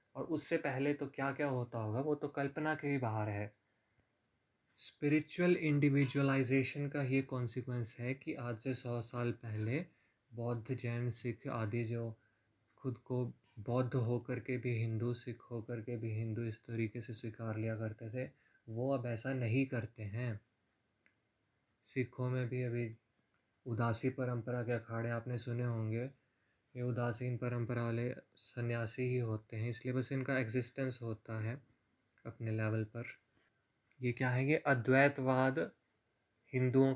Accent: native